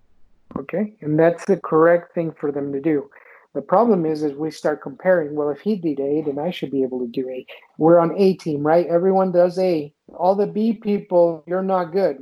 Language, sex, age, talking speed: English, male, 50-69, 220 wpm